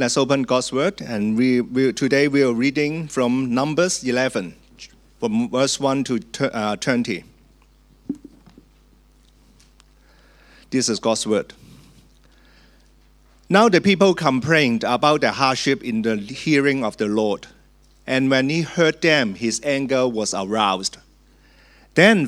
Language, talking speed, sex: English, 120 wpm, male